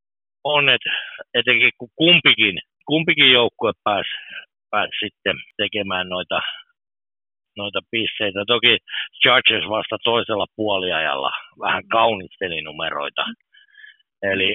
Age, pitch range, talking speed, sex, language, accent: 60-79, 105-150 Hz, 85 wpm, male, Finnish, native